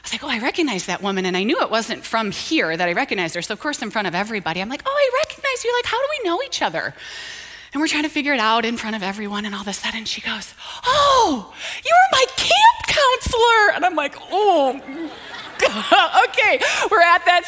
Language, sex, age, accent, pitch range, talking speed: English, female, 30-49, American, 185-295 Hz, 245 wpm